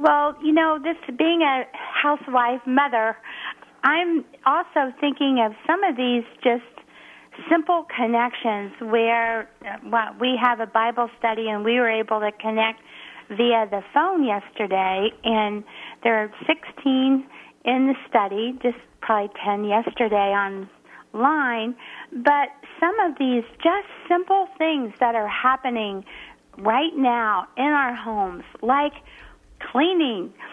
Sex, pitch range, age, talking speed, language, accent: female, 220-285 Hz, 50-69, 125 wpm, English, American